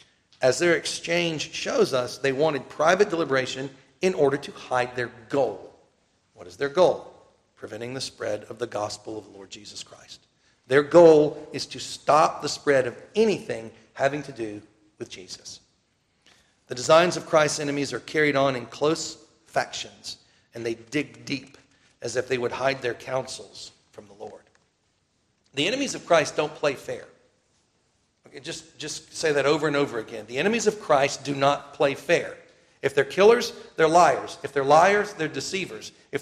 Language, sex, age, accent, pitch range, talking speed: English, male, 40-59, American, 130-165 Hz, 170 wpm